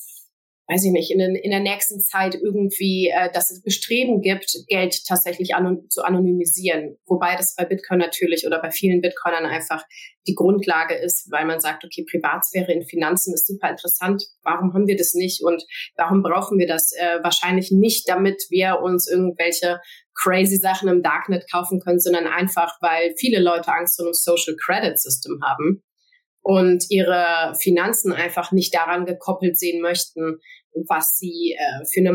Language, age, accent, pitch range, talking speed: German, 30-49, German, 175-195 Hz, 170 wpm